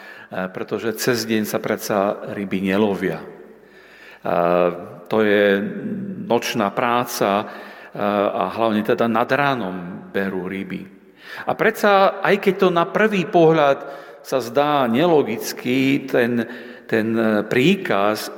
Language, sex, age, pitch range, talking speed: Slovak, male, 50-69, 110-150 Hz, 105 wpm